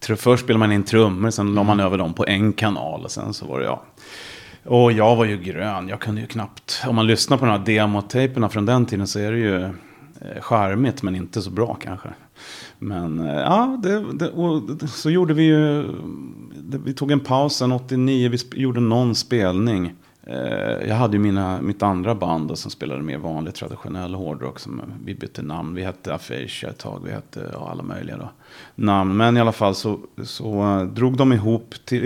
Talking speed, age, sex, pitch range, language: 200 wpm, 30-49, male, 100-125 Hz, Swedish